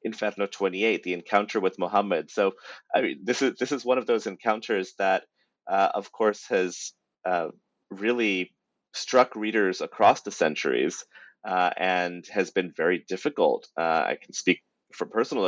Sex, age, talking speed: male, 30-49, 160 wpm